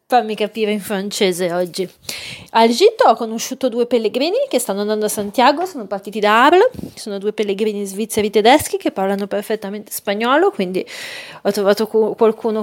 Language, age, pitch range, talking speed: Italian, 30-49, 195-245 Hz, 155 wpm